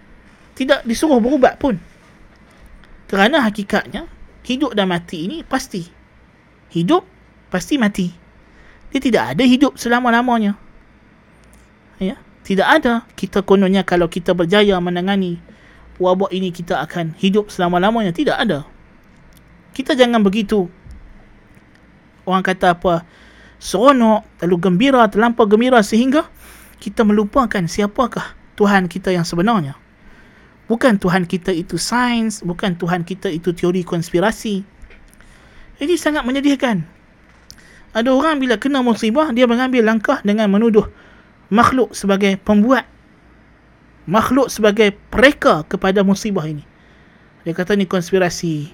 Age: 20-39